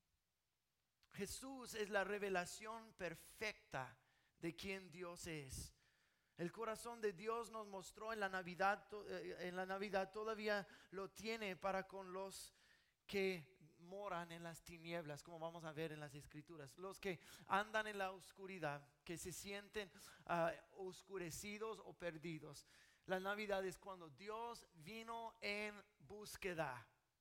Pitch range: 165-210 Hz